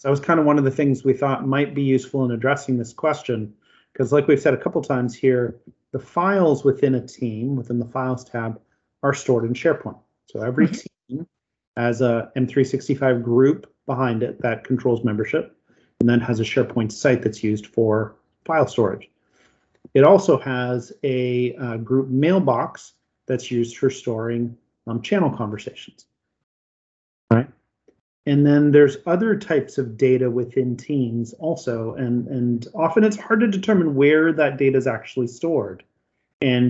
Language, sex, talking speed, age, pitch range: English, male, 165 wpm, 30-49, 120-145 Hz